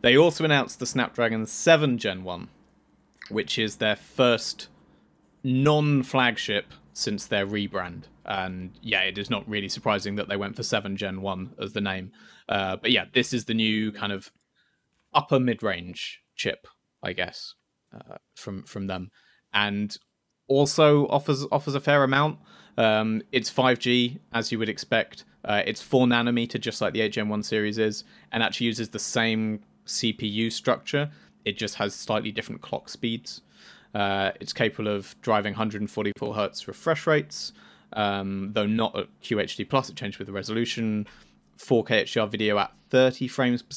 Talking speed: 160 wpm